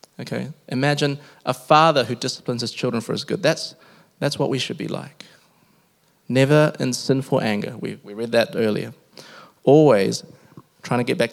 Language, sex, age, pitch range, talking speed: English, male, 20-39, 125-165 Hz, 170 wpm